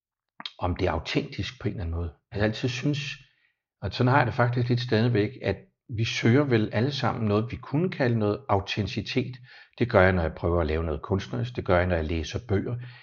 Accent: native